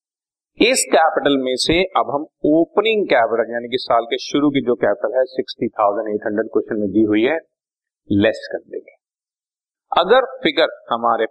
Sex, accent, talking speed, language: male, native, 155 wpm, Hindi